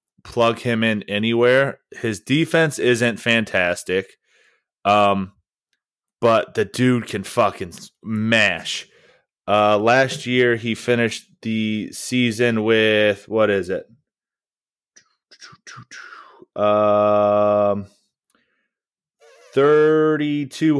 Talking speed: 80 wpm